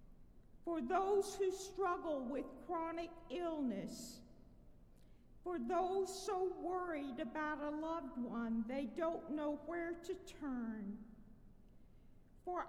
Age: 50-69